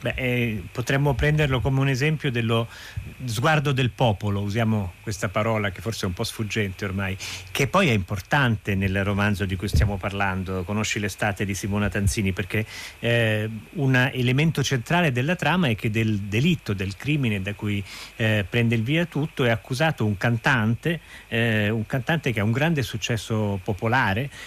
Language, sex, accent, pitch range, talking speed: Italian, male, native, 100-130 Hz, 165 wpm